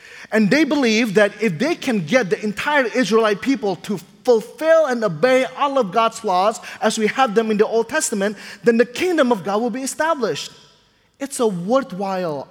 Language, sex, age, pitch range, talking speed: English, male, 20-39, 180-255 Hz, 185 wpm